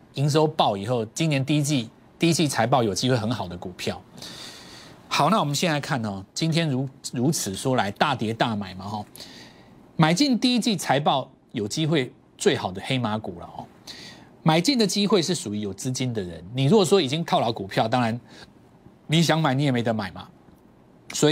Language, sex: Chinese, male